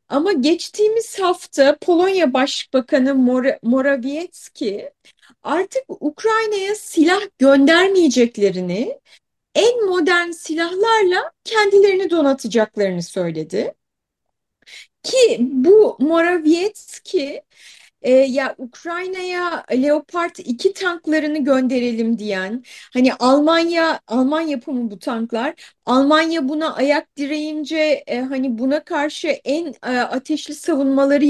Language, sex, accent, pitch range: Turkish, female, native, 260-350 Hz